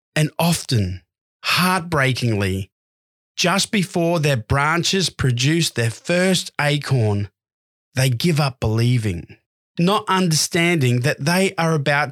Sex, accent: male, Australian